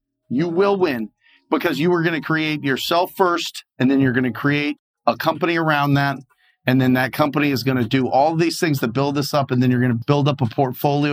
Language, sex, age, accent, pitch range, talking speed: English, male, 30-49, American, 135-165 Hz, 220 wpm